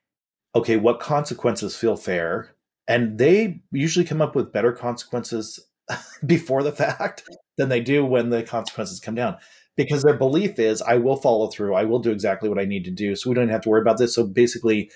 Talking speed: 210 wpm